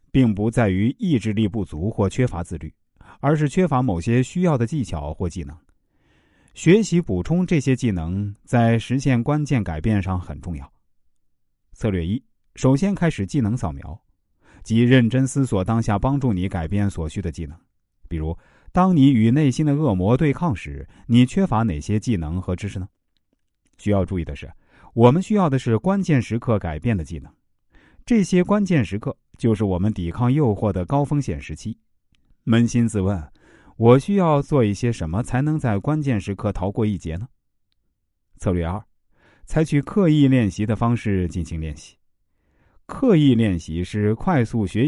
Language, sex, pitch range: Chinese, male, 90-130 Hz